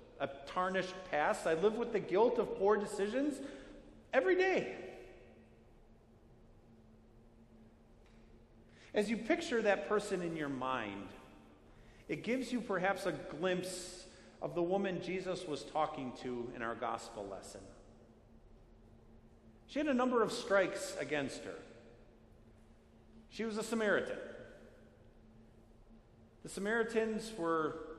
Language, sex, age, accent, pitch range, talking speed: English, male, 50-69, American, 155-220 Hz, 115 wpm